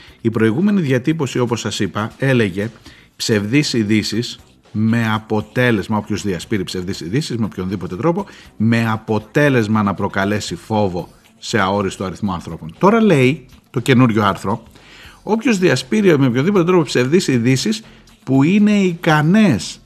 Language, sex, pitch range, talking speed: Greek, male, 105-150 Hz, 120 wpm